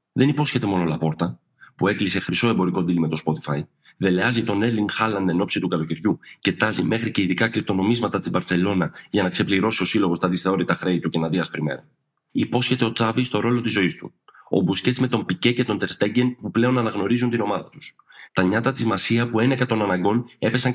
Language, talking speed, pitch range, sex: Greek, 210 wpm, 90-120 Hz, male